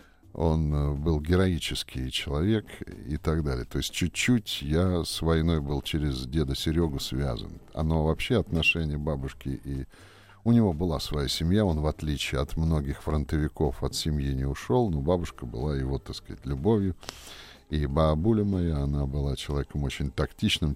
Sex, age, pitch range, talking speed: male, 50-69, 70-85 Hz, 155 wpm